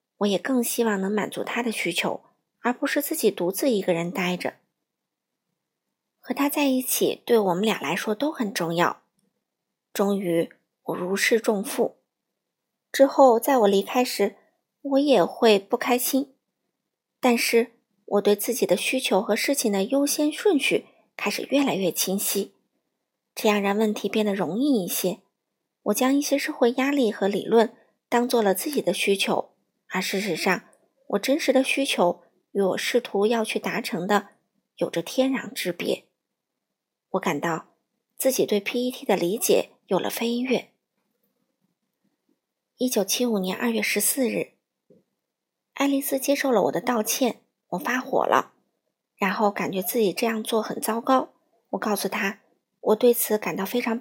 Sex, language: female, Chinese